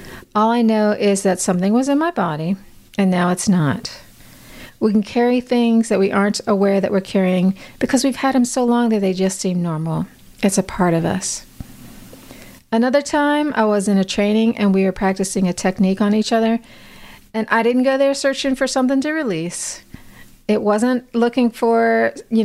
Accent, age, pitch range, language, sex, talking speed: American, 40-59, 190-235 Hz, English, female, 190 wpm